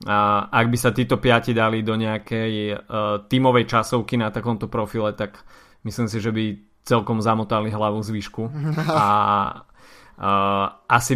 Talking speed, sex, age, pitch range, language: 140 wpm, male, 20-39, 110-120 Hz, Slovak